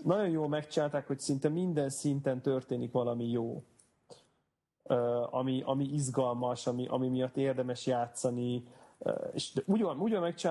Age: 30-49